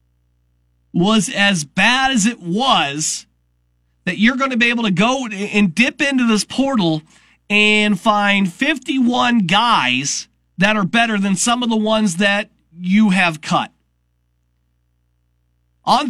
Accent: American